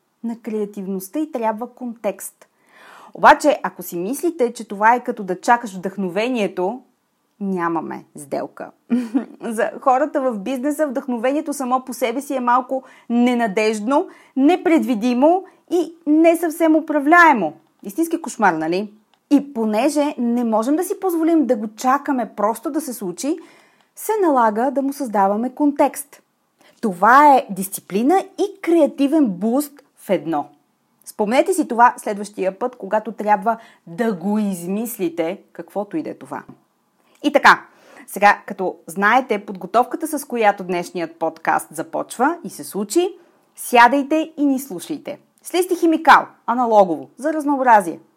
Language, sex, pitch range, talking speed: Bulgarian, female, 210-295 Hz, 125 wpm